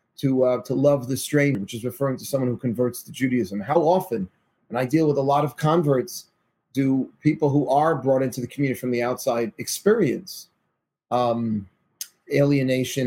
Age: 30-49